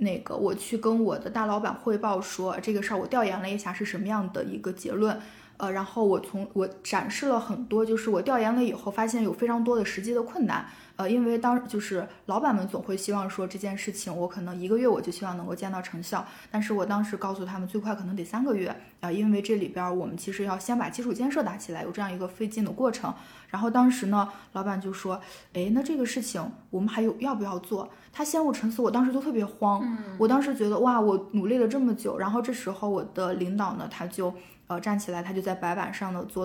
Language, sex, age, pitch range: Chinese, female, 20-39, 185-230 Hz